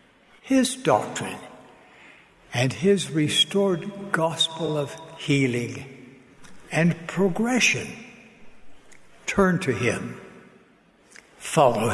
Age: 60-79